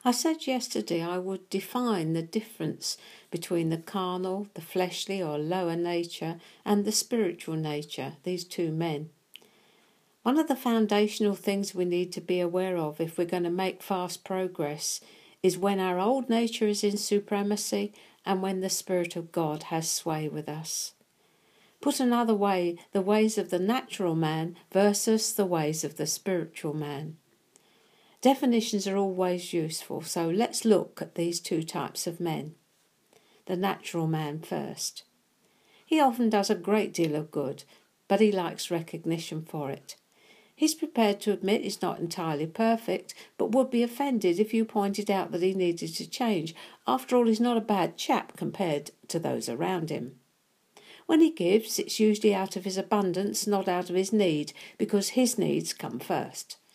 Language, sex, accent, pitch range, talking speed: English, female, British, 170-215 Hz, 165 wpm